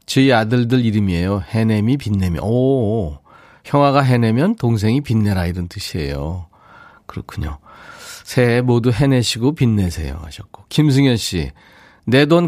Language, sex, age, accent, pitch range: Korean, male, 40-59, native, 100-140 Hz